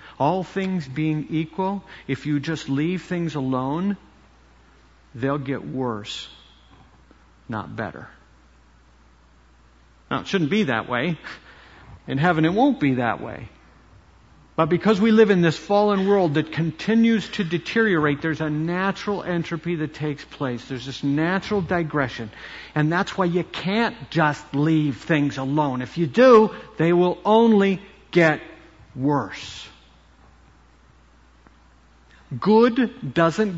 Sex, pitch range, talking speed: male, 105-170 Hz, 125 wpm